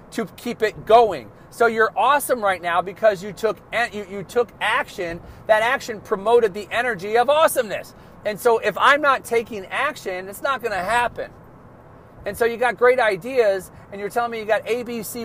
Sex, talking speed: male, 195 wpm